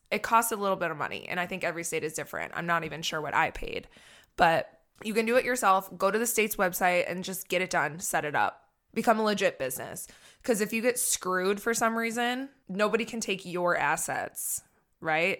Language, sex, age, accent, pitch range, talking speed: English, female, 20-39, American, 170-220 Hz, 225 wpm